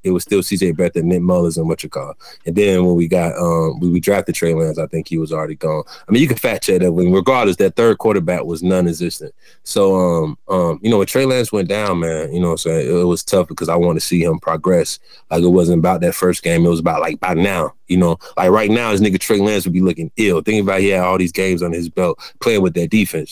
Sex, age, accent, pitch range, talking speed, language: male, 20-39, American, 85-100 Hz, 280 wpm, English